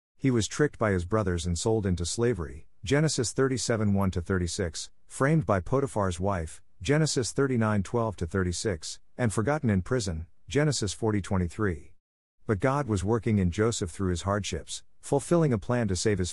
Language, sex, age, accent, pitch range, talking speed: English, male, 50-69, American, 90-115 Hz, 145 wpm